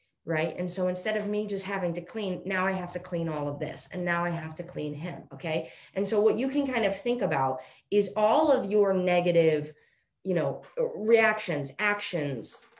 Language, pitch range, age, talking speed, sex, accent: English, 160-210 Hz, 20-39, 205 wpm, female, American